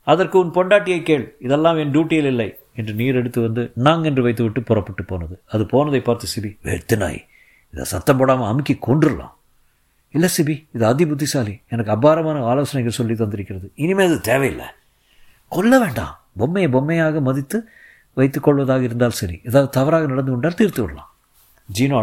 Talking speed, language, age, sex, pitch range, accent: 145 wpm, Tamil, 50-69, male, 105-145 Hz, native